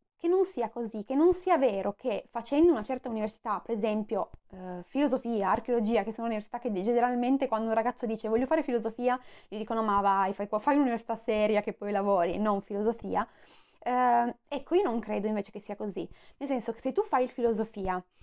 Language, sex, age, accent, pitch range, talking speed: Italian, female, 20-39, native, 210-255 Hz, 200 wpm